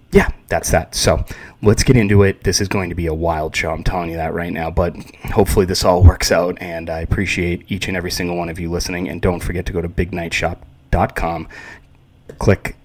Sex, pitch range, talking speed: male, 85-100 Hz, 220 wpm